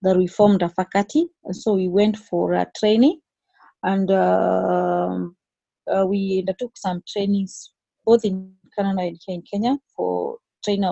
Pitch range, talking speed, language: 185-240 Hz, 145 wpm, English